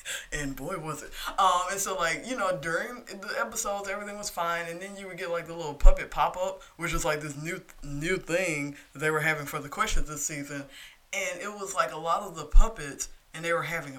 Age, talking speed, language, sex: 20-39, 245 wpm, English, female